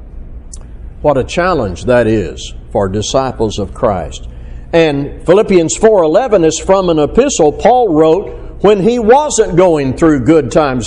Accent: American